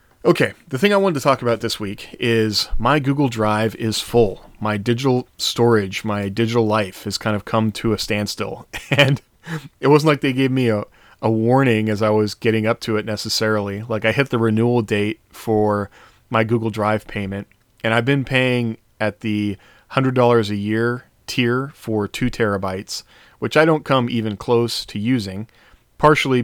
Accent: American